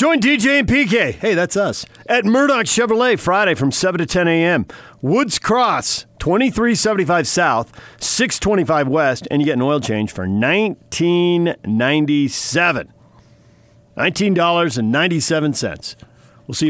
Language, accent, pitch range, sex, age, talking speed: English, American, 120-190 Hz, male, 50-69, 120 wpm